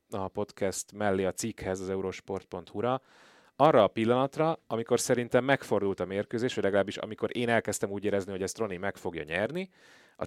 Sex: male